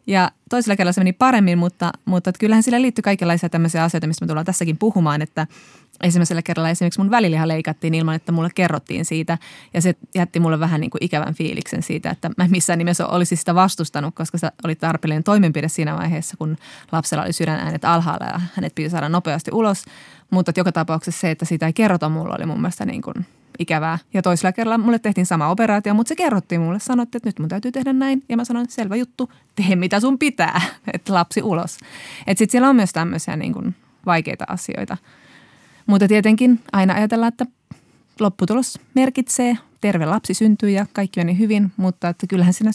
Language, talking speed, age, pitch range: Finnish, 200 wpm, 20-39, 165-210 Hz